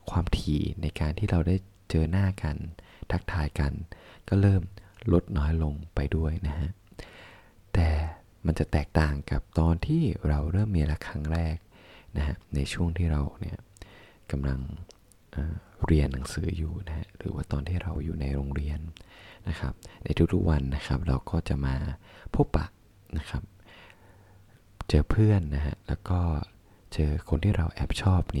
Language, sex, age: Thai, male, 20-39